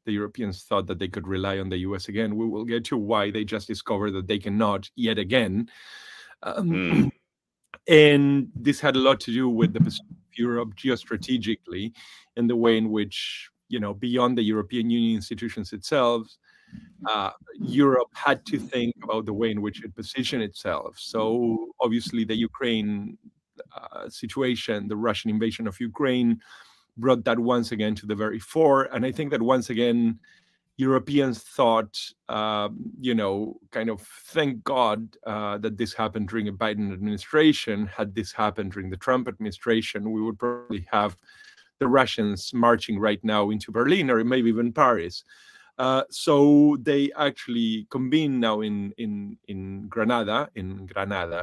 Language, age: English, 30-49